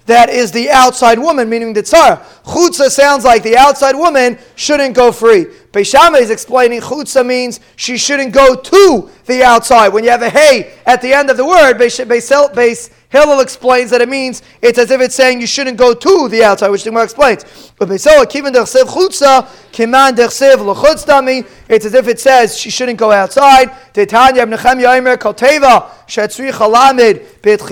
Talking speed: 145 wpm